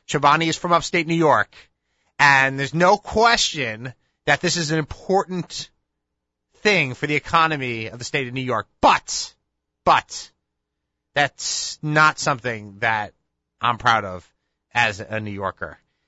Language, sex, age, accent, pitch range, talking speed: English, male, 30-49, American, 120-155 Hz, 140 wpm